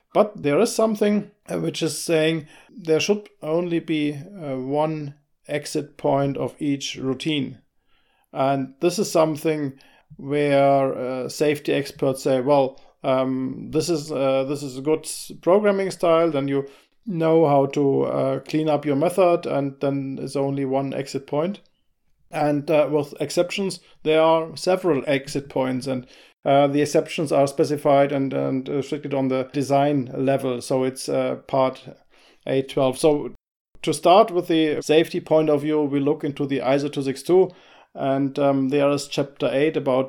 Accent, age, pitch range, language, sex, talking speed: German, 50-69, 135-155 Hz, English, male, 150 wpm